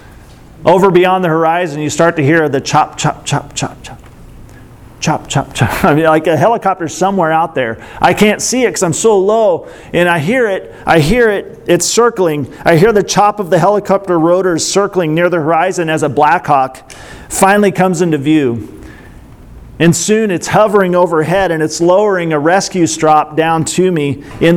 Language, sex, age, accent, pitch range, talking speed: English, male, 40-59, American, 145-185 Hz, 185 wpm